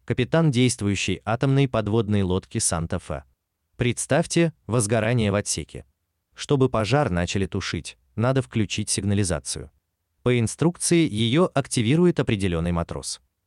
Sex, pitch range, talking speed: male, 85-130 Hz, 105 wpm